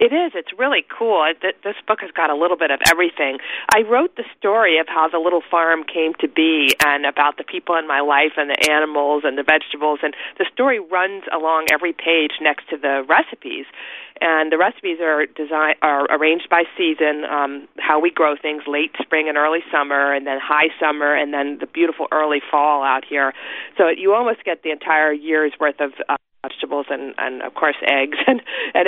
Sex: female